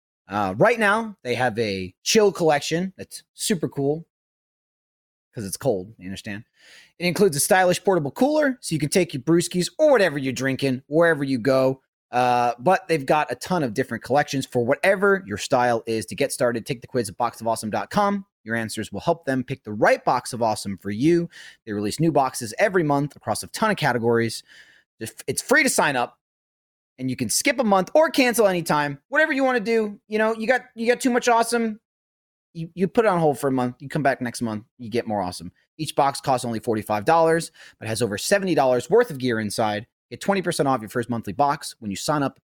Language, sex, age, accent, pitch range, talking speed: English, male, 30-49, American, 115-185 Hz, 215 wpm